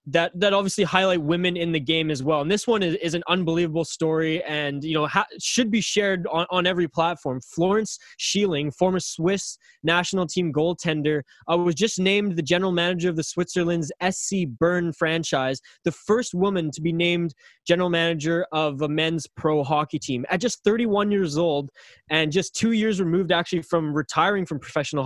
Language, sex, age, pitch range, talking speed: English, male, 20-39, 150-175 Hz, 185 wpm